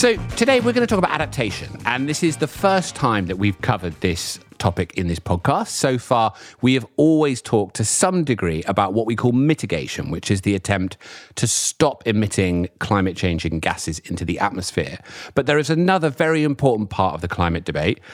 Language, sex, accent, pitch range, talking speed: English, male, British, 95-150 Hz, 200 wpm